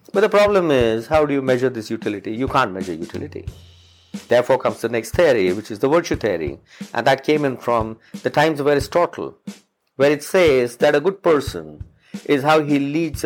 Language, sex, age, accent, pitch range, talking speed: English, male, 50-69, Indian, 110-155 Hz, 200 wpm